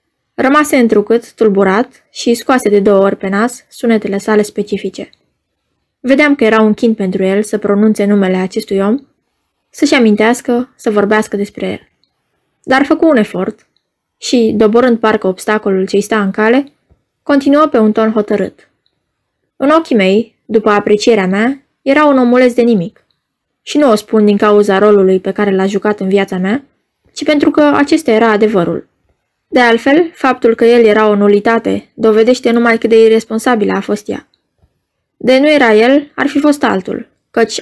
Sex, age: female, 20-39